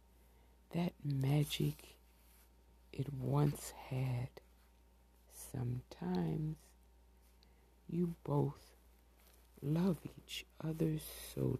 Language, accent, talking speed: English, American, 60 wpm